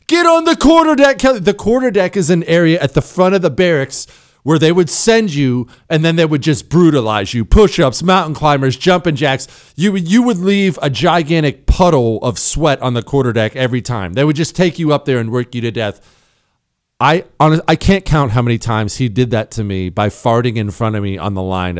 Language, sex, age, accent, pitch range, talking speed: English, male, 40-59, American, 115-175 Hz, 230 wpm